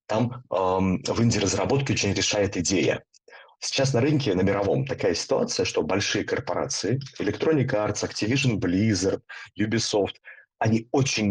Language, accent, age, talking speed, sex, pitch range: Russian, native, 30-49, 135 wpm, male, 100-135 Hz